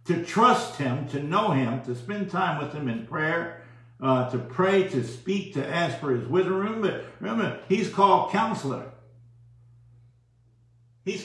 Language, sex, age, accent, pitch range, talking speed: English, male, 60-79, American, 120-180 Hz, 155 wpm